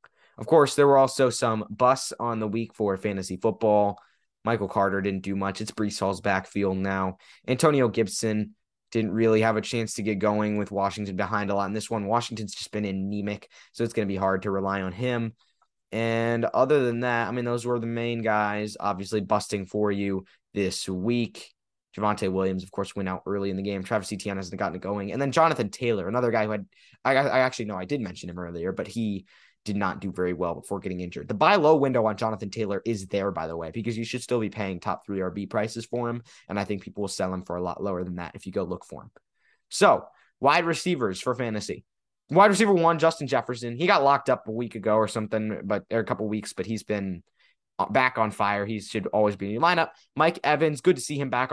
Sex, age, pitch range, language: male, 20-39, 100-125 Hz, English